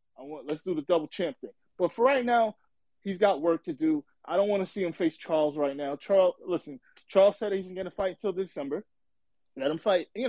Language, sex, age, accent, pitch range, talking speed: English, male, 20-39, American, 150-190 Hz, 235 wpm